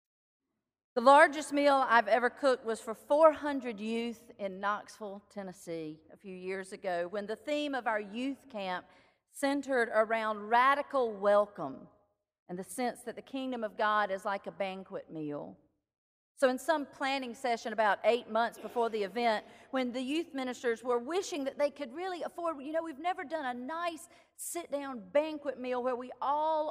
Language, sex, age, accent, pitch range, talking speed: English, female, 40-59, American, 205-275 Hz, 170 wpm